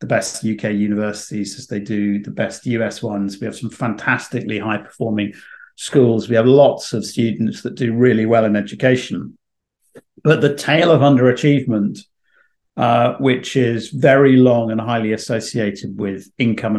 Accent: British